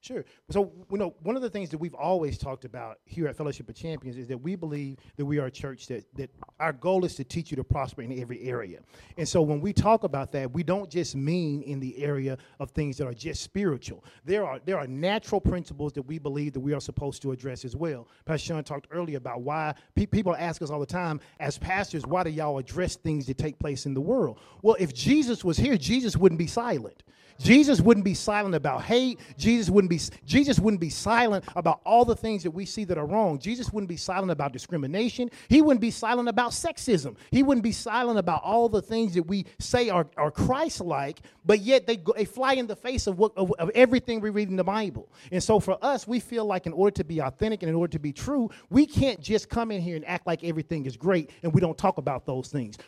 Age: 40-59